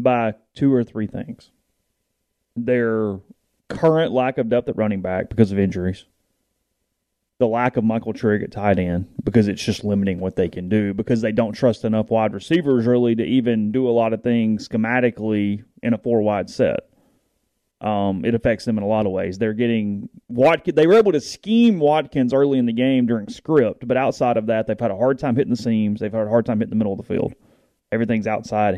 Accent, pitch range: American, 105-125 Hz